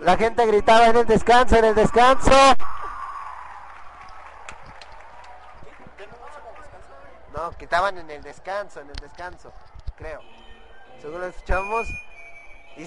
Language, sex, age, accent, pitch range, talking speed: Spanish, male, 30-49, Mexican, 170-240 Hz, 100 wpm